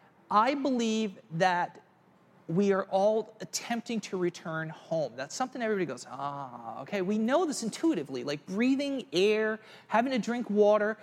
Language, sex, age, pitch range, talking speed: English, male, 40-59, 165-225 Hz, 145 wpm